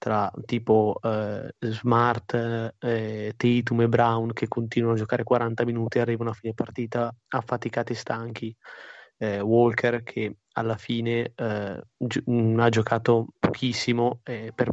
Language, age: Italian, 20-39